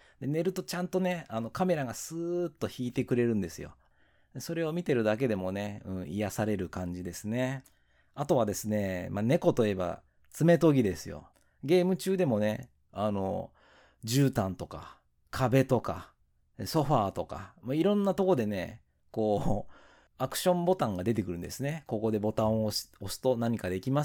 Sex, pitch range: male, 95-145 Hz